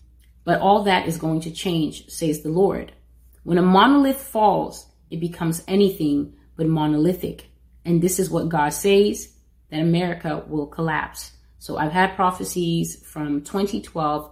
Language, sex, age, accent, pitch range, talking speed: English, female, 30-49, American, 155-185 Hz, 145 wpm